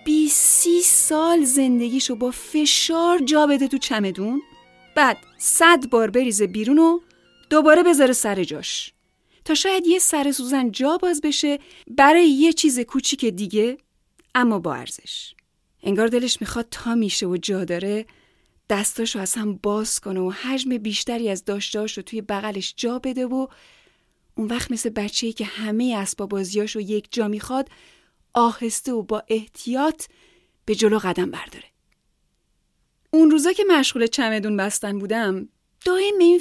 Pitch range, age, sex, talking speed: 210-310 Hz, 30-49, female, 140 wpm